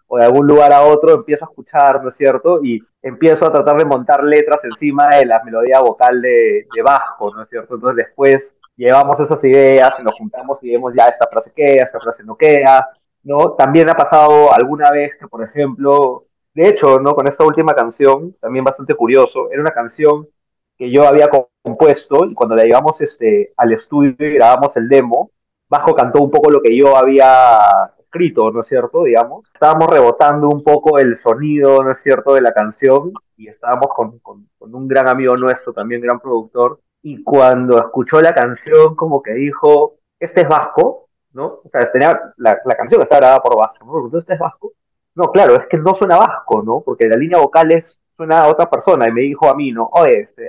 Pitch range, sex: 130-165 Hz, male